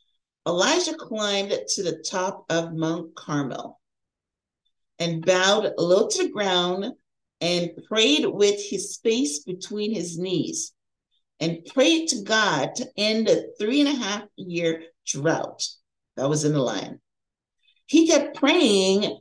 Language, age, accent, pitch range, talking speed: English, 40-59, American, 170-265 Hz, 135 wpm